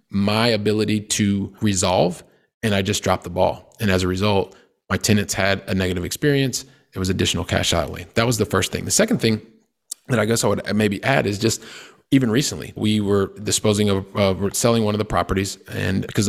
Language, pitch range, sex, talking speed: English, 100-115 Hz, male, 205 wpm